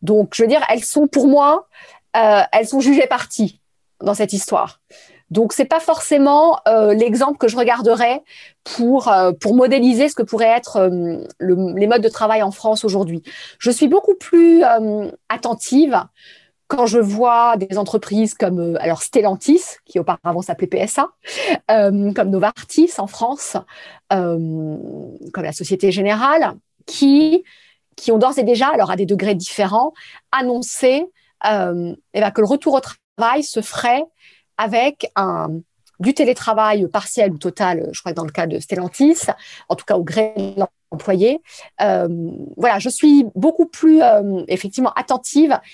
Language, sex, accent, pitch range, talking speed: French, female, French, 195-270 Hz, 165 wpm